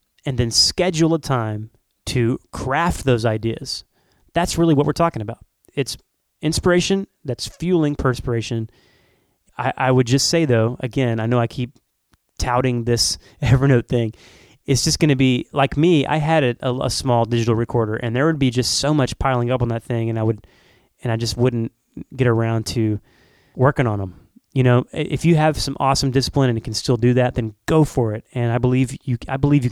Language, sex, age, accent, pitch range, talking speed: English, male, 30-49, American, 115-140 Hz, 195 wpm